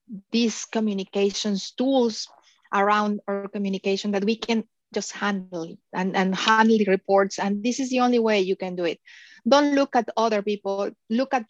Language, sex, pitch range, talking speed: English, female, 200-250 Hz, 170 wpm